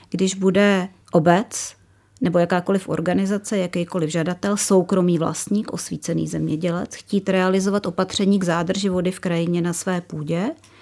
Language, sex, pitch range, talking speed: Czech, female, 170-200 Hz, 130 wpm